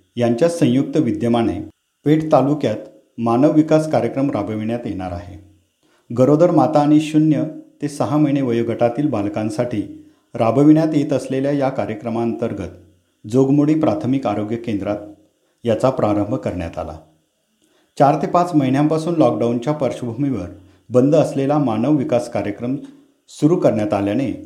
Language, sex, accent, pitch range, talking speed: Marathi, male, native, 105-150 Hz, 115 wpm